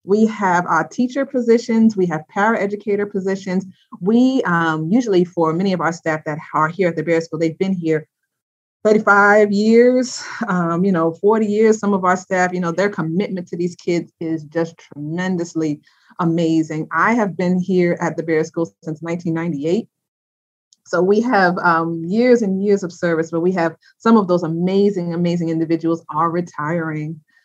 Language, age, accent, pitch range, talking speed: English, 30-49, American, 165-200 Hz, 175 wpm